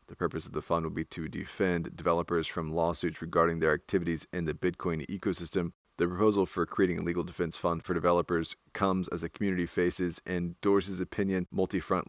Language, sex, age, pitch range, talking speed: English, male, 30-49, 80-90 Hz, 190 wpm